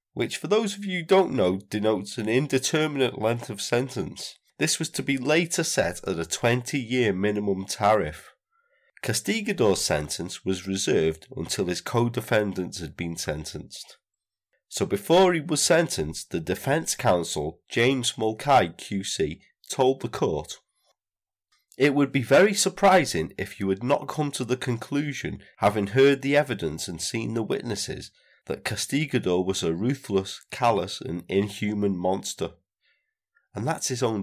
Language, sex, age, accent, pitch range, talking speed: English, male, 30-49, British, 100-140 Hz, 145 wpm